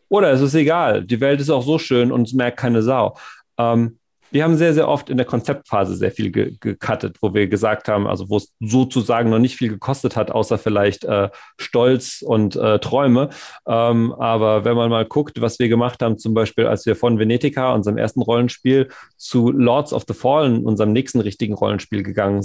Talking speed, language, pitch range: 205 wpm, German, 110-150 Hz